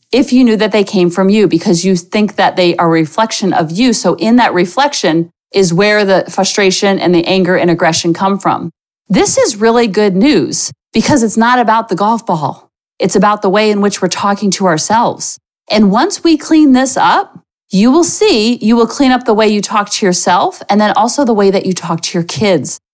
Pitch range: 190-275 Hz